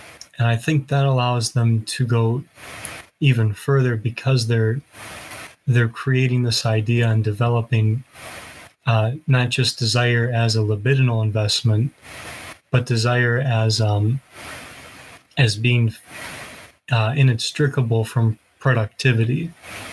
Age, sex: 30-49, male